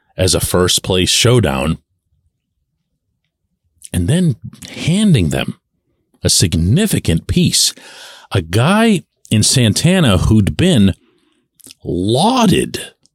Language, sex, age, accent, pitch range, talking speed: English, male, 40-59, American, 105-160 Hz, 85 wpm